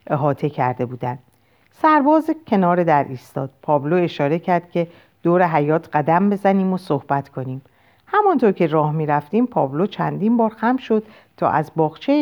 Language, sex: Persian, female